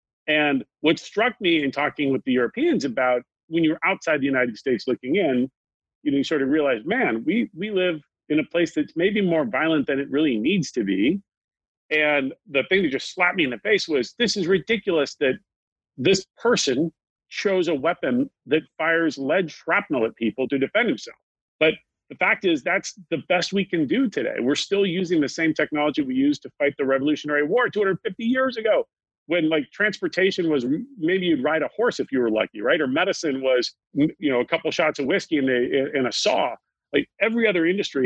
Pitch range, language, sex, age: 135-185 Hz, English, male, 40-59